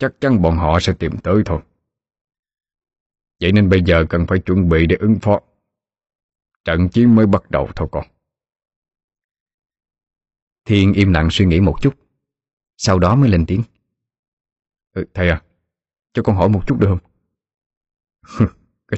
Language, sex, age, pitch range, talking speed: Vietnamese, male, 20-39, 75-105 Hz, 150 wpm